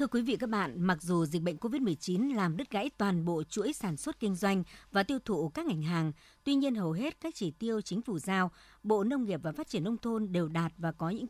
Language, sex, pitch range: Vietnamese, male, 175-240 Hz